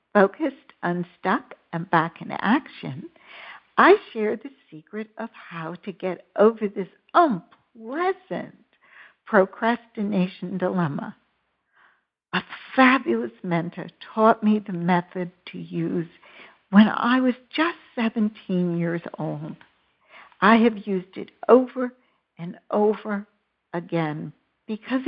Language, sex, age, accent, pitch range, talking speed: English, female, 60-79, American, 175-230 Hz, 105 wpm